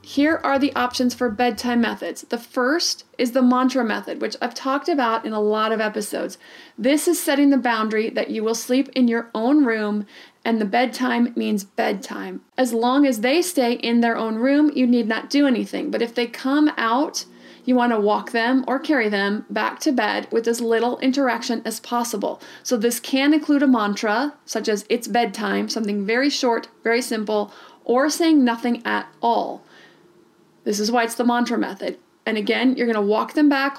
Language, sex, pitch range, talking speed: English, female, 225-260 Hz, 195 wpm